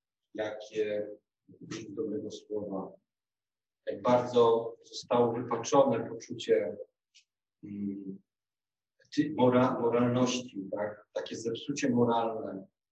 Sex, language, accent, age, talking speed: male, Polish, native, 40-59, 60 wpm